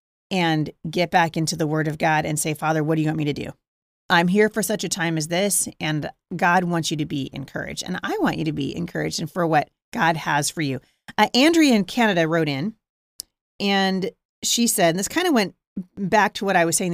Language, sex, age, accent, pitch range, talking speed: English, female, 30-49, American, 155-205 Hz, 235 wpm